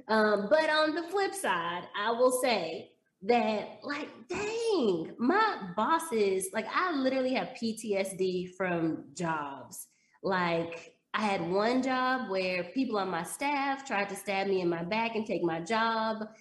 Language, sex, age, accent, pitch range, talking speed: English, female, 20-39, American, 180-250 Hz, 155 wpm